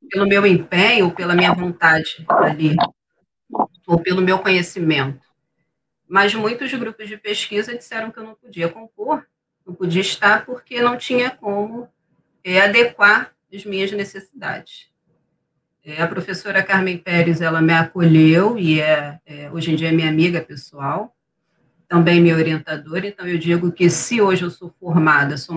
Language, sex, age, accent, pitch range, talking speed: Portuguese, female, 40-59, Brazilian, 160-215 Hz, 155 wpm